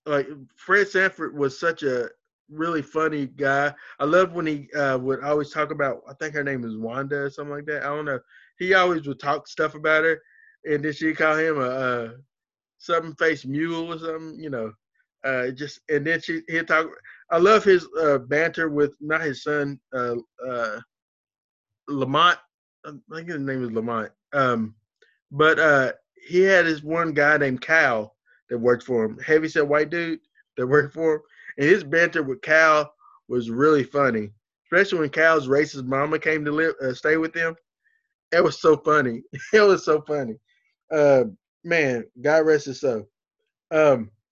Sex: male